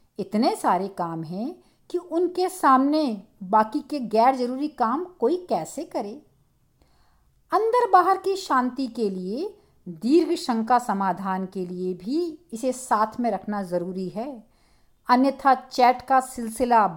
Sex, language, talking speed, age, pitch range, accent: female, Hindi, 130 wpm, 50-69, 205-285 Hz, native